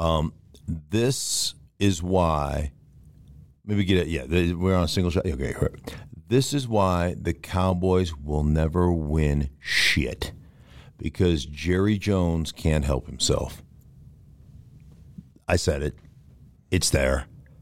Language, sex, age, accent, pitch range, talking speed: English, male, 50-69, American, 80-105 Hz, 120 wpm